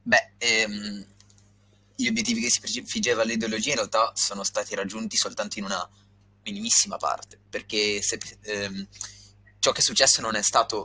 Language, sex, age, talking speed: Italian, male, 20-39, 155 wpm